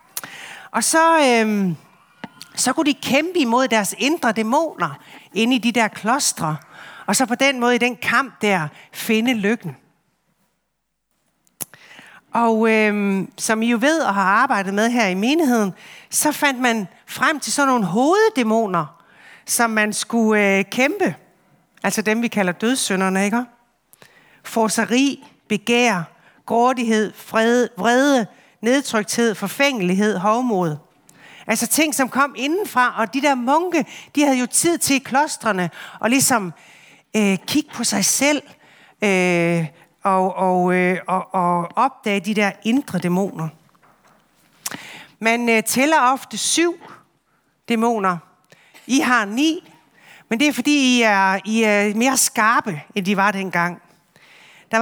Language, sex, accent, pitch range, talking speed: Danish, female, native, 195-260 Hz, 135 wpm